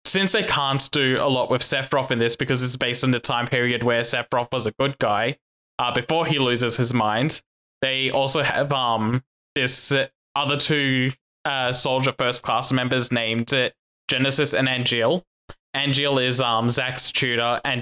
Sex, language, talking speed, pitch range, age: male, English, 170 wpm, 120-135 Hz, 10-29